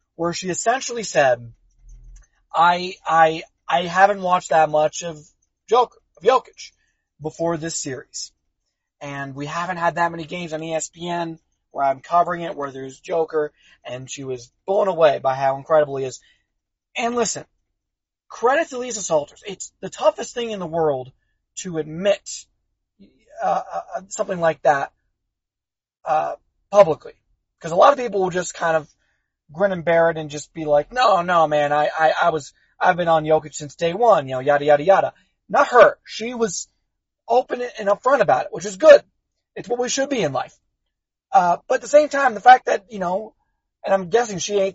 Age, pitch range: 30-49, 155-200 Hz